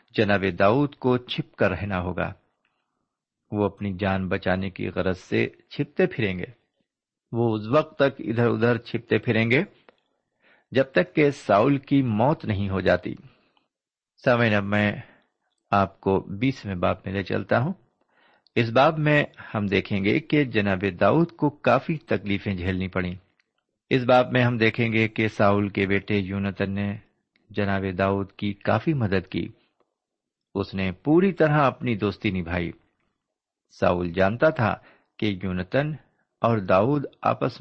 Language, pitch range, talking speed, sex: Urdu, 95-130 Hz, 145 wpm, male